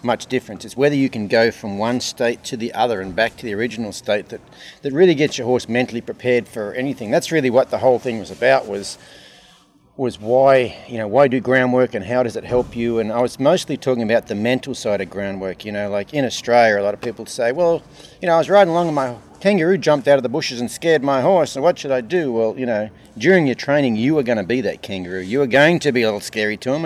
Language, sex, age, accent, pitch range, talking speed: English, male, 30-49, Australian, 105-135 Hz, 265 wpm